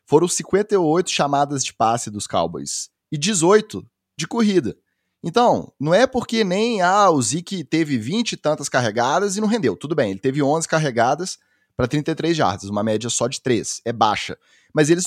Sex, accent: male, Brazilian